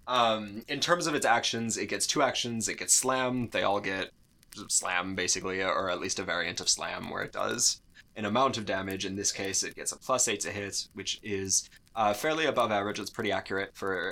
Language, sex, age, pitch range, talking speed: English, male, 20-39, 95-120 Hz, 220 wpm